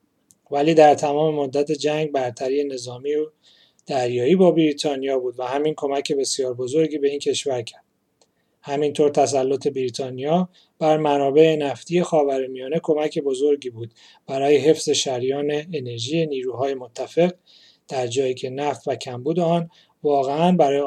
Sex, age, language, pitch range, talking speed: male, 30-49, Persian, 135-155 Hz, 130 wpm